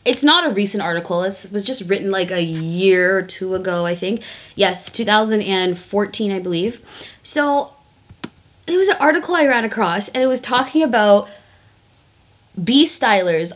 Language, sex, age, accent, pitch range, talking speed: English, female, 20-39, American, 170-225 Hz, 155 wpm